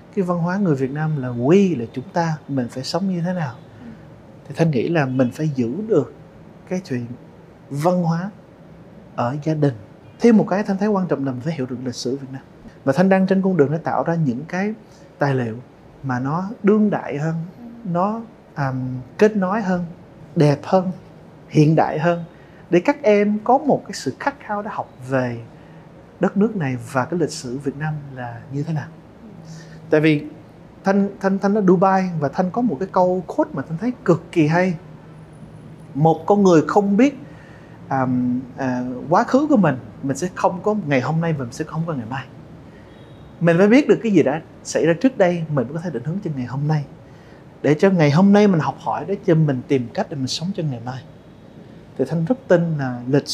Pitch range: 135-190 Hz